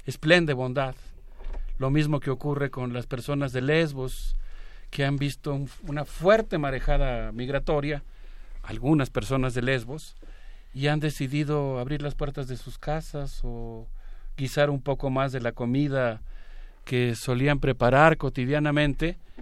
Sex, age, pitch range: male, 50-69, 125-150 Hz